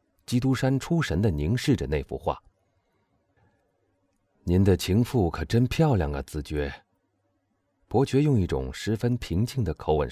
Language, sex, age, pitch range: Chinese, male, 30-49, 95-135 Hz